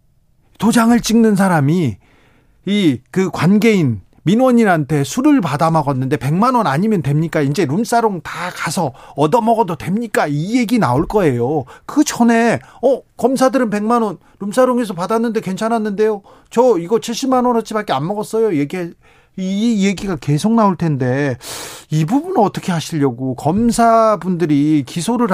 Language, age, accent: Korean, 40-59, native